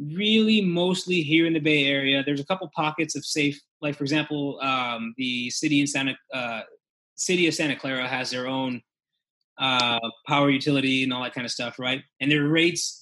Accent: American